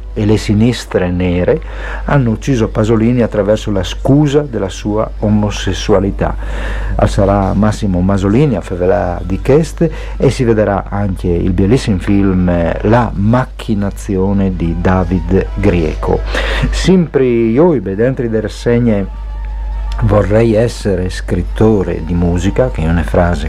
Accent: native